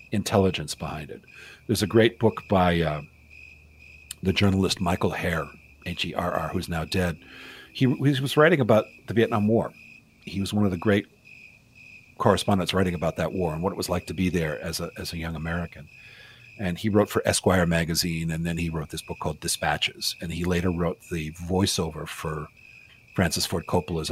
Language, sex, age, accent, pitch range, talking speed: English, male, 50-69, American, 85-110 Hz, 185 wpm